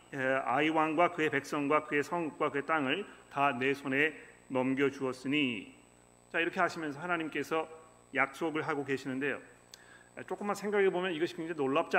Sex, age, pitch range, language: male, 40-59, 115-180 Hz, Korean